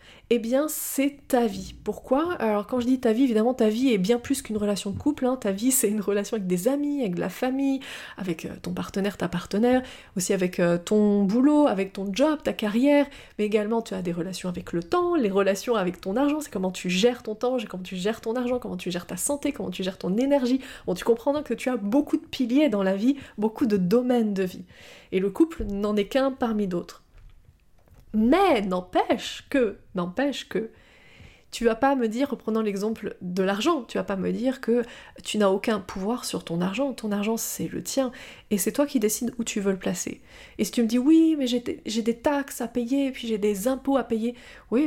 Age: 20-39